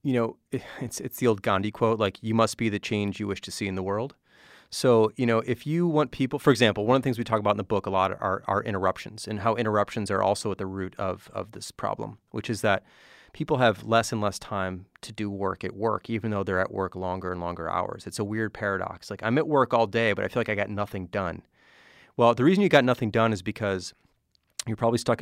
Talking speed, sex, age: 260 wpm, male, 30-49